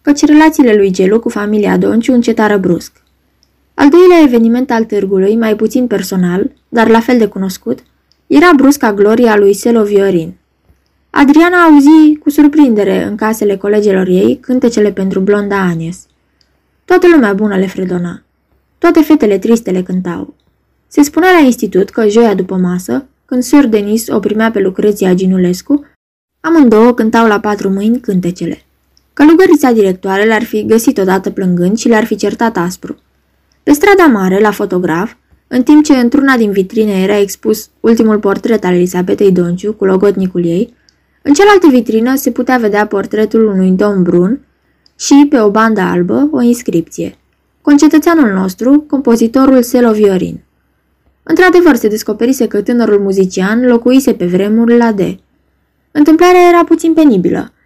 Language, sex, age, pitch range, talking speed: Romanian, female, 20-39, 195-270 Hz, 150 wpm